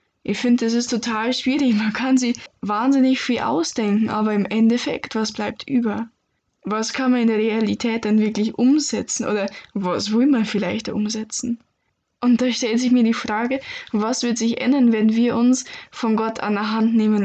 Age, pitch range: 10-29, 205-245 Hz